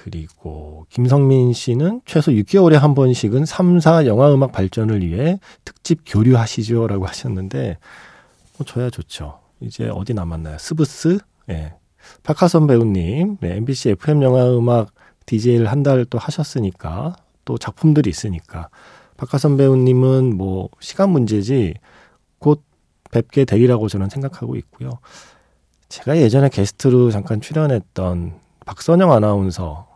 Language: Korean